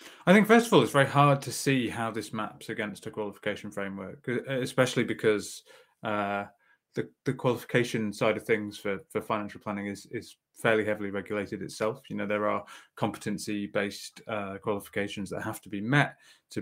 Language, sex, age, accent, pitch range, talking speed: English, male, 20-39, British, 100-115 Hz, 175 wpm